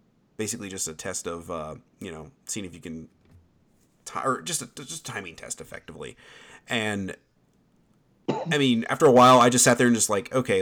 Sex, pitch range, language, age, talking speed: male, 95-120 Hz, English, 30-49, 200 wpm